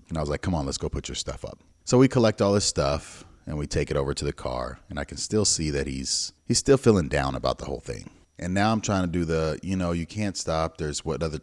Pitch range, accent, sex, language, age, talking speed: 70-90 Hz, American, male, English, 30-49, 295 wpm